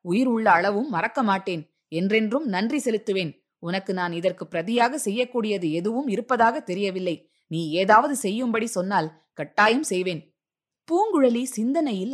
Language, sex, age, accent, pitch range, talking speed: Tamil, female, 20-39, native, 180-240 Hz, 120 wpm